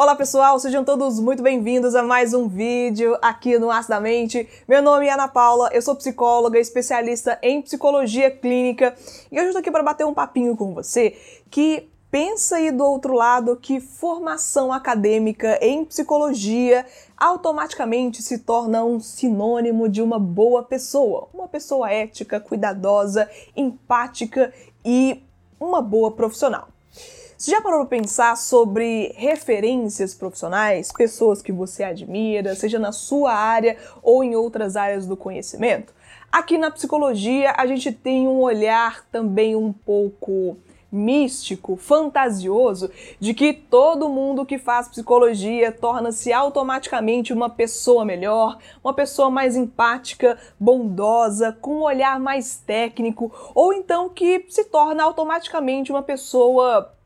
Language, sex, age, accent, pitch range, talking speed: Portuguese, female, 20-39, Brazilian, 225-280 Hz, 140 wpm